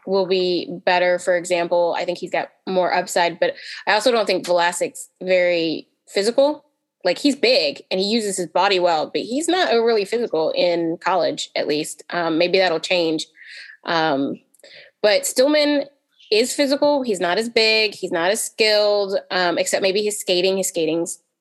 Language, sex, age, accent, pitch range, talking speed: English, female, 20-39, American, 175-230 Hz, 170 wpm